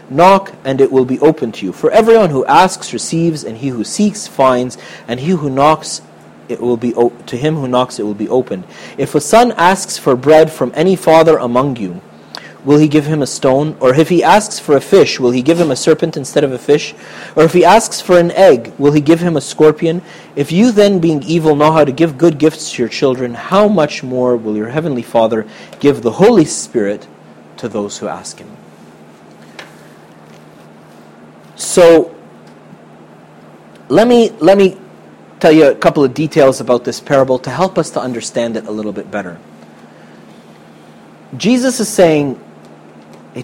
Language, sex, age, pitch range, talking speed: English, male, 30-49, 115-165 Hz, 190 wpm